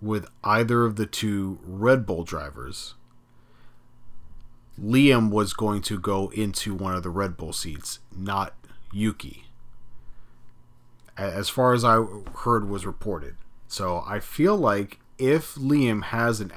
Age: 30-49